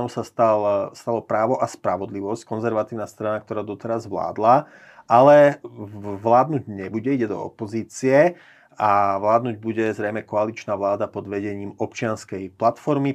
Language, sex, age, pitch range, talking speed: Slovak, male, 30-49, 105-115 Hz, 125 wpm